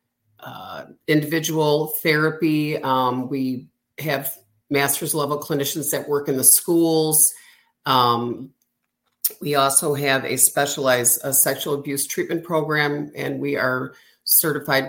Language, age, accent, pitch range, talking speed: English, 50-69, American, 130-150 Hz, 115 wpm